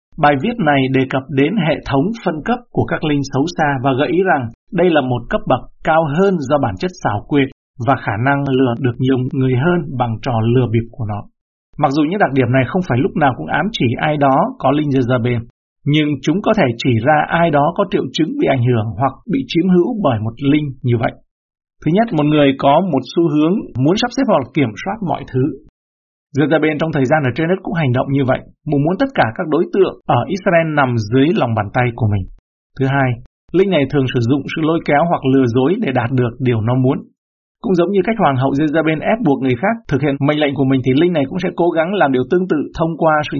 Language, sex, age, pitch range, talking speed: Vietnamese, male, 60-79, 130-160 Hz, 250 wpm